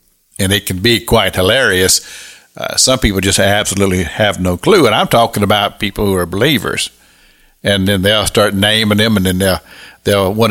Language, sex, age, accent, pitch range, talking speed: English, male, 50-69, American, 100-120 Hz, 190 wpm